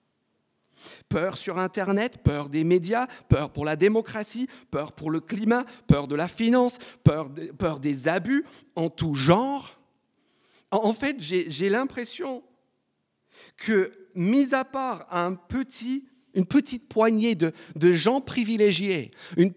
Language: French